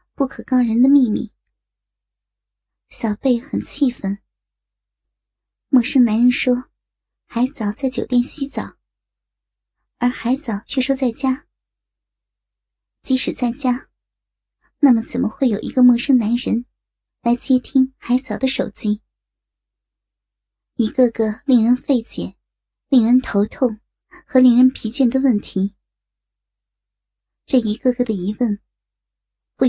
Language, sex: Chinese, male